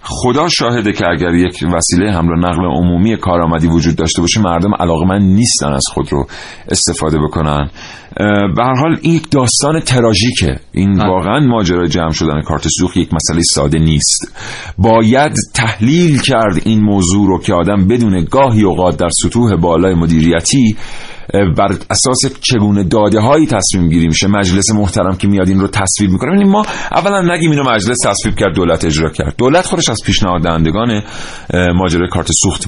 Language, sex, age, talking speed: Persian, male, 40-59, 155 wpm